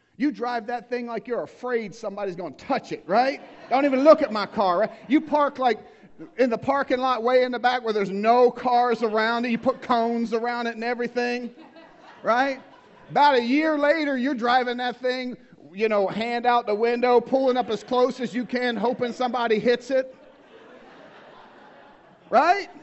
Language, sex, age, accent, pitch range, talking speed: English, male, 40-59, American, 220-270 Hz, 185 wpm